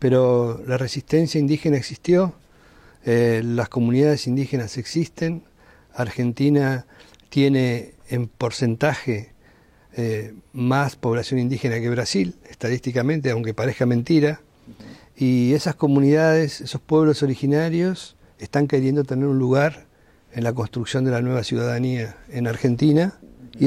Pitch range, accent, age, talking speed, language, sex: 115-145 Hz, Argentinian, 50-69, 115 wpm, English, male